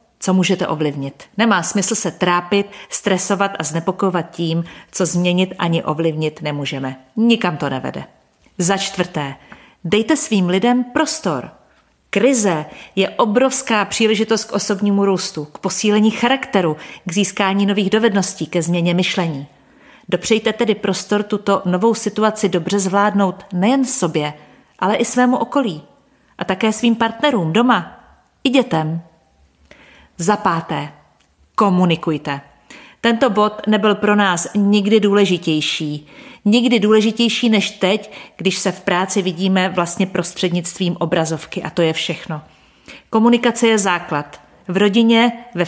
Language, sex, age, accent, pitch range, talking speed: Czech, female, 30-49, native, 165-220 Hz, 125 wpm